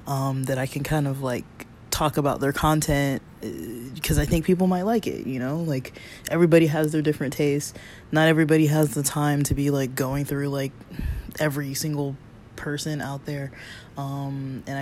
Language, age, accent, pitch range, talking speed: English, 20-39, American, 135-155 Hz, 180 wpm